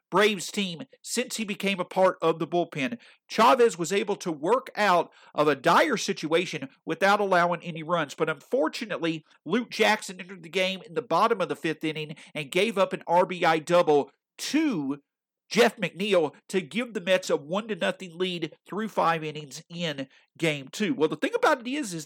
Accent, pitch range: American, 165-230 Hz